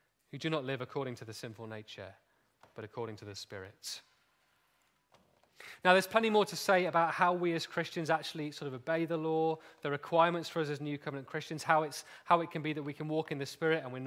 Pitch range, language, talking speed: 120-155 Hz, English, 230 wpm